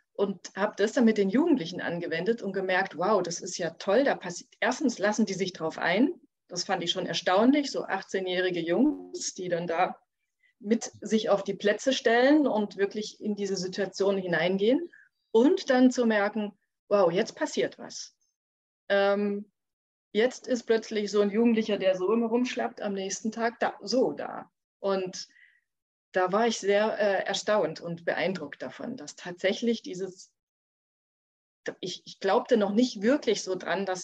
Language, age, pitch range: German, 30-49, 190-245 Hz